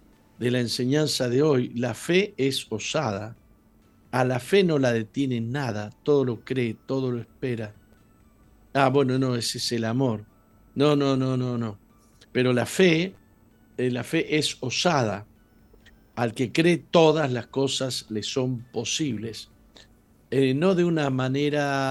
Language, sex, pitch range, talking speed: Spanish, male, 110-150 Hz, 155 wpm